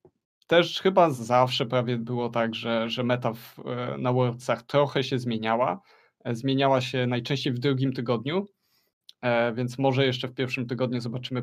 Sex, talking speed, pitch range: male, 140 wpm, 120-140 Hz